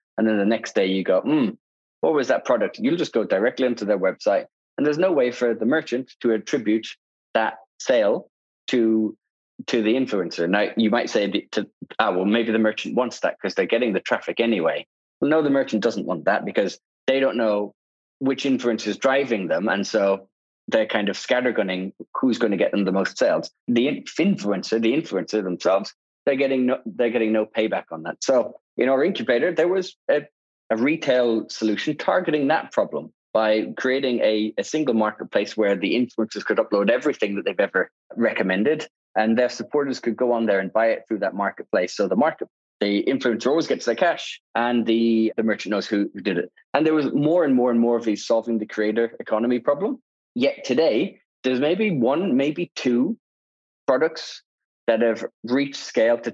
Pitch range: 110-130 Hz